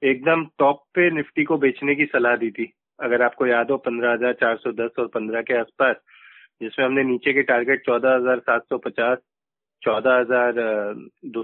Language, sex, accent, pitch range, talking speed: Hindi, male, native, 130-165 Hz, 190 wpm